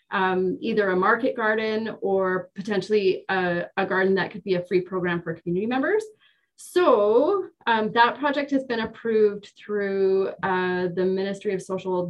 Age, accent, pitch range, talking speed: 30-49, American, 180-225 Hz, 160 wpm